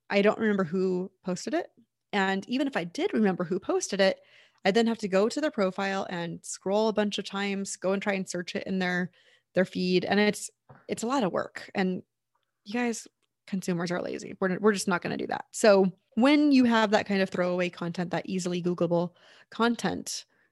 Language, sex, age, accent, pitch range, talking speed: English, female, 20-39, American, 185-220 Hz, 210 wpm